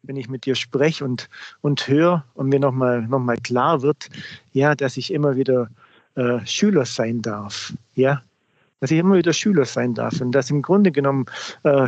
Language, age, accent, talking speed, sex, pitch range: German, 40-59, German, 190 wpm, male, 130-165 Hz